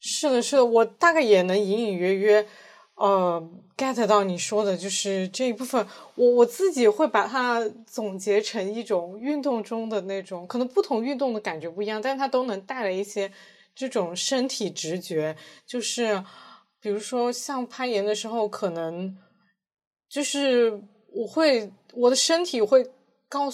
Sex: female